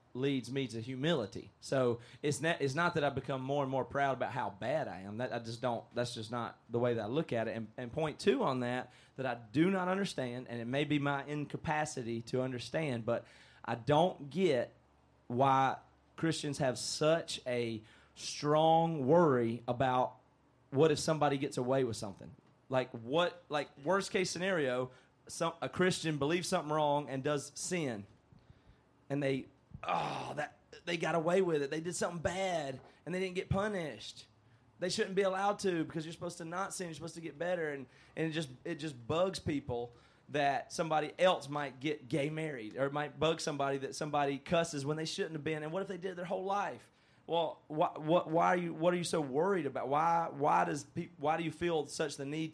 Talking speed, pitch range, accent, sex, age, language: 205 wpm, 125-165 Hz, American, male, 30-49, English